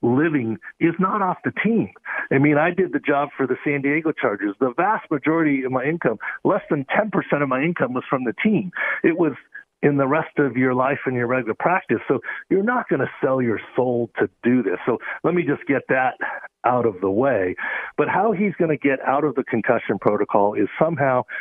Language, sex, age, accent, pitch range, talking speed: English, male, 50-69, American, 115-145 Hz, 225 wpm